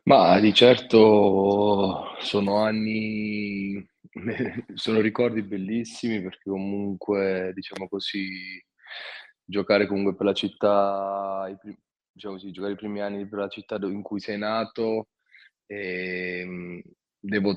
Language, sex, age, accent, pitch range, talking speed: Italian, male, 20-39, native, 95-105 Hz, 110 wpm